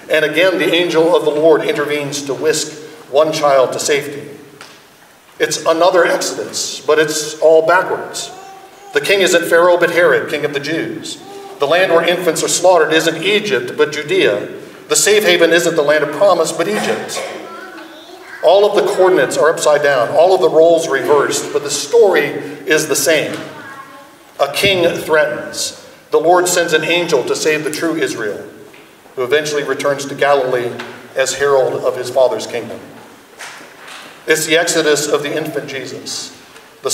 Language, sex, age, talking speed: English, male, 50-69, 165 wpm